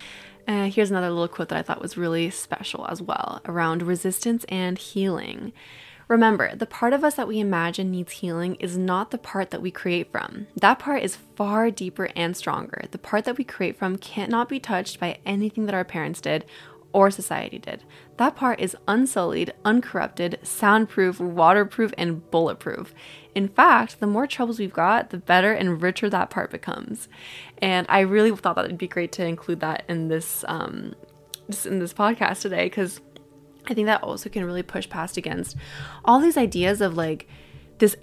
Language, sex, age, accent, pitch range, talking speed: English, female, 20-39, American, 175-215 Hz, 185 wpm